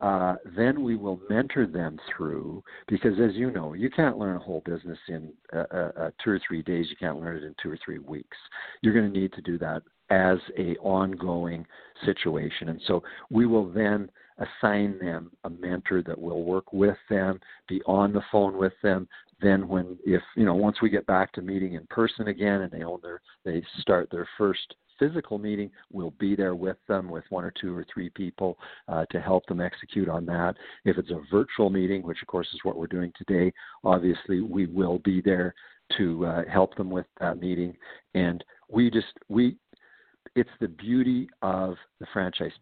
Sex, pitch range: male, 85-105 Hz